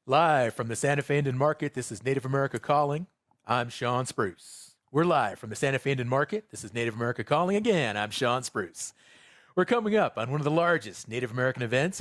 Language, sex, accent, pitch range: English, male, American, 120-160 Hz